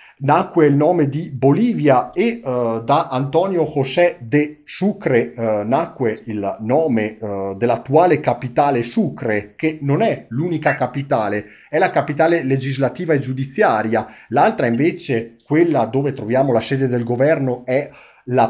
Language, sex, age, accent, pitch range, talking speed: Italian, male, 40-59, native, 115-150 Hz, 125 wpm